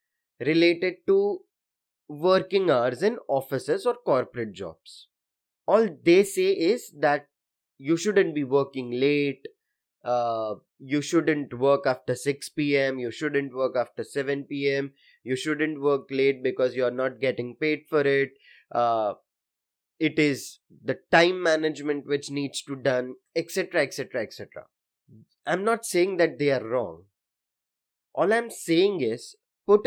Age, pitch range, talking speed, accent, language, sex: 20-39, 140-225 Hz, 140 wpm, Indian, English, male